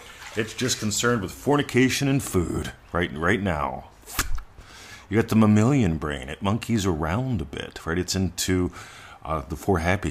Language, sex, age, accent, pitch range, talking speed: English, male, 40-59, American, 80-105 Hz, 160 wpm